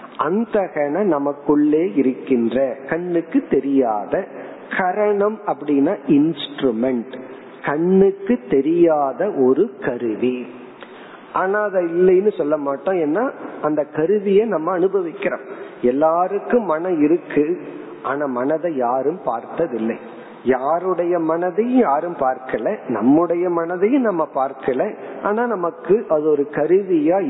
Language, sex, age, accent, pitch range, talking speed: Tamil, male, 50-69, native, 145-230 Hz, 90 wpm